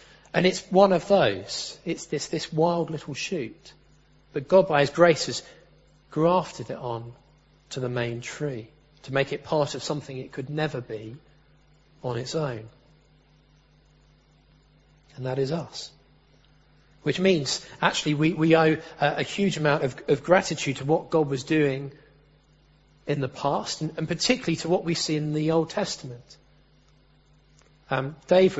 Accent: British